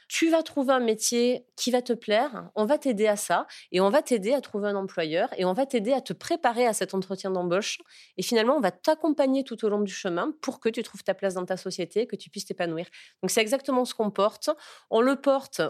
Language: French